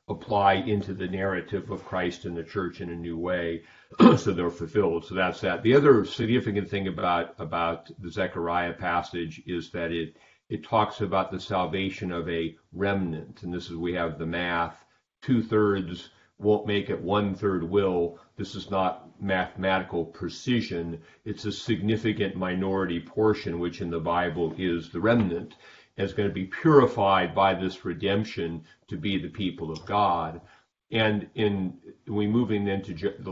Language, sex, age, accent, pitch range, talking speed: English, male, 50-69, American, 85-105 Hz, 160 wpm